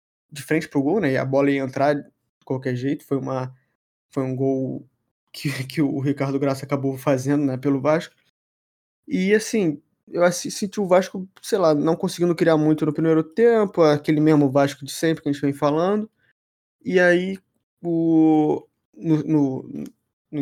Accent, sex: Brazilian, male